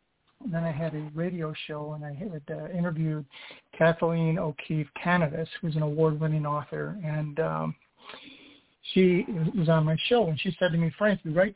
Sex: male